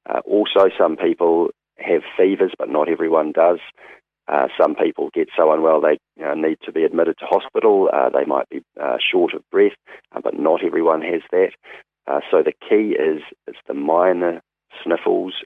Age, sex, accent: 40-59, male, Australian